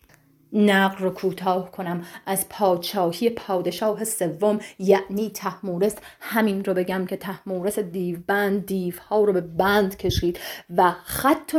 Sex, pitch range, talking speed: female, 180-215 Hz, 130 wpm